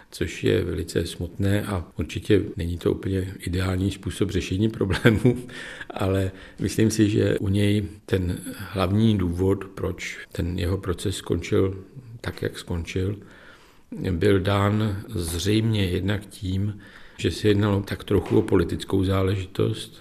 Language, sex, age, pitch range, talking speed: Czech, male, 50-69, 90-100 Hz, 130 wpm